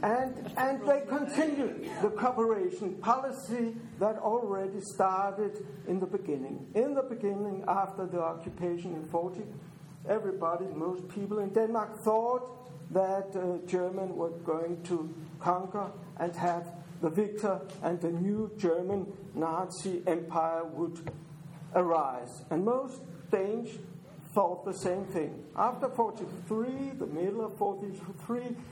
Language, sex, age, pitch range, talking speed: English, male, 60-79, 170-215 Hz, 125 wpm